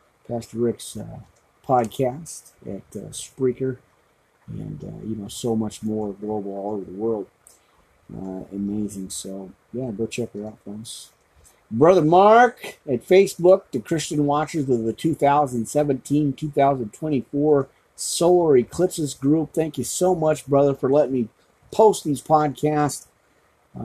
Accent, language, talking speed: American, English, 130 wpm